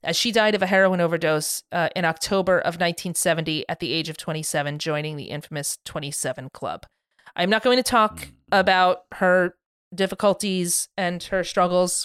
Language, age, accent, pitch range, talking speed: English, 30-49, American, 165-195 Hz, 165 wpm